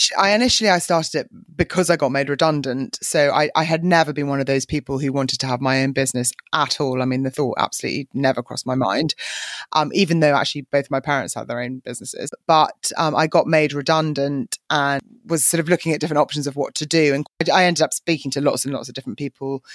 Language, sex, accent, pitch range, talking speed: English, female, British, 130-150 Hz, 240 wpm